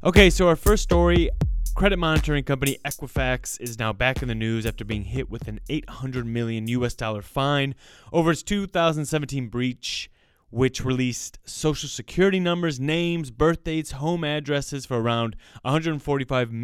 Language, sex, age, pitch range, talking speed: English, male, 20-39, 115-155 Hz, 150 wpm